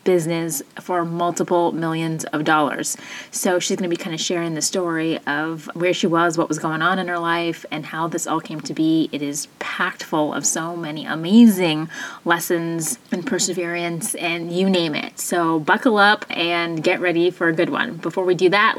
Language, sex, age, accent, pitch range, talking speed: English, female, 20-39, American, 165-195 Hz, 200 wpm